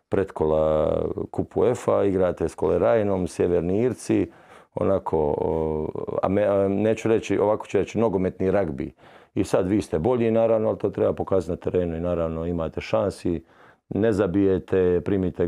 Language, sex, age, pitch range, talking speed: Croatian, male, 50-69, 80-95 Hz, 155 wpm